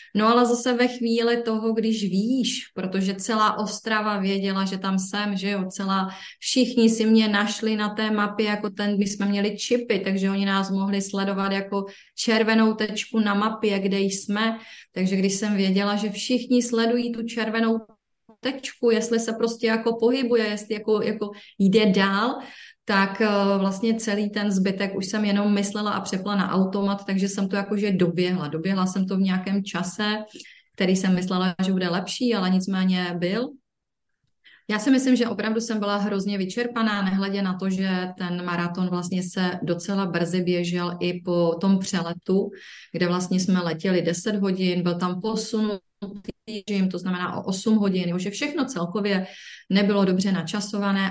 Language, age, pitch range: Czech, 30-49, 190-220 Hz